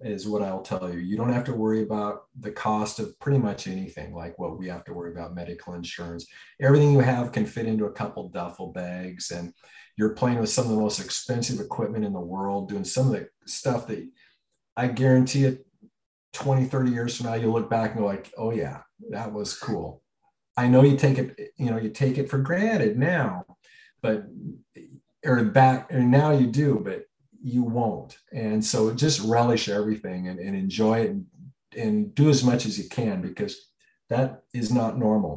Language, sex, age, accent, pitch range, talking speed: English, male, 50-69, American, 100-130 Hz, 200 wpm